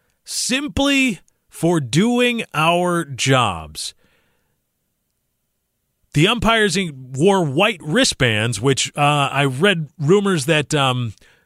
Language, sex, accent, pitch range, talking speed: English, male, American, 145-200 Hz, 90 wpm